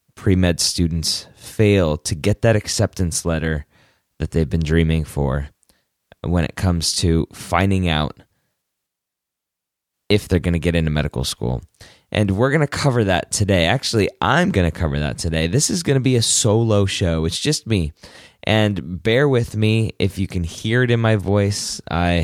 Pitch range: 80-110 Hz